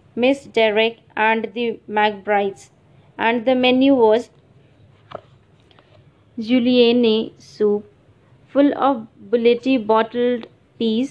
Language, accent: English, Indian